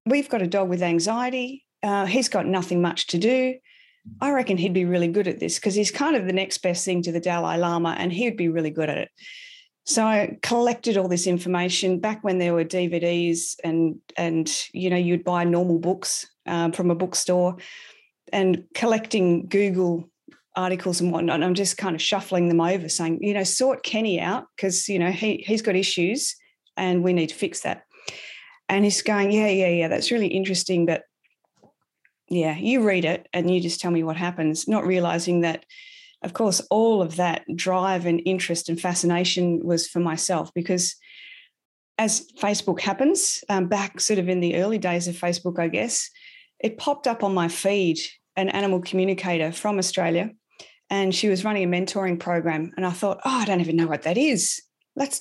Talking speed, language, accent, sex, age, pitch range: 195 wpm, English, Australian, female, 40-59, 175-215 Hz